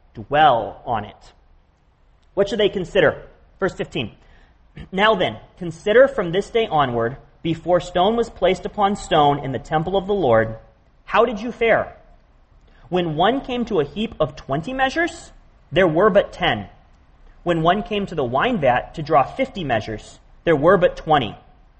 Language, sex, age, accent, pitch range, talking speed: English, male, 40-59, American, 140-200 Hz, 165 wpm